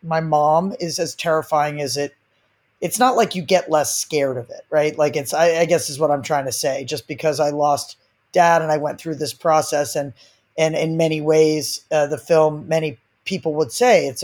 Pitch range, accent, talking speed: 145-170 Hz, American, 220 wpm